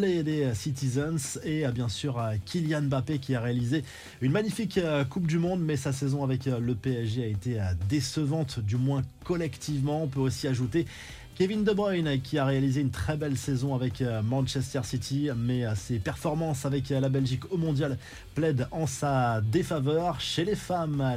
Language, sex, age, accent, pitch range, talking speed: French, male, 20-39, French, 125-160 Hz, 170 wpm